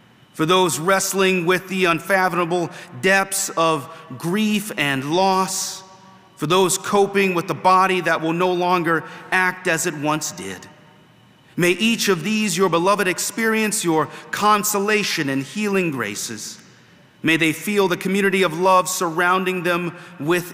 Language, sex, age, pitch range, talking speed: English, male, 40-59, 160-195 Hz, 140 wpm